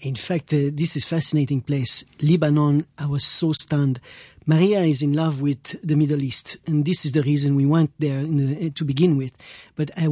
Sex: male